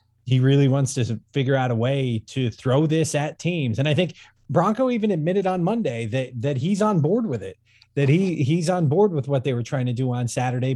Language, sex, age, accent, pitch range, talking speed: English, male, 30-49, American, 115-150 Hz, 235 wpm